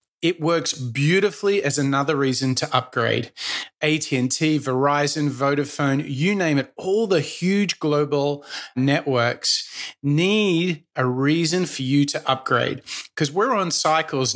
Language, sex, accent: English, male, Australian